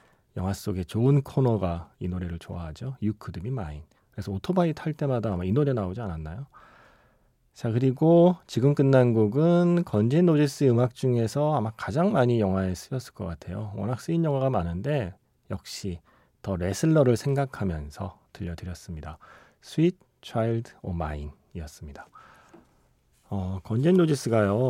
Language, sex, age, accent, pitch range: Korean, male, 40-59, native, 95-140 Hz